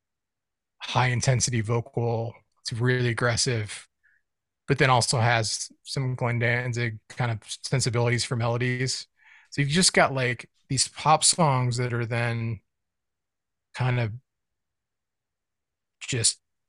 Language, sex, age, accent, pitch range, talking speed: English, male, 30-49, American, 110-130 Hz, 110 wpm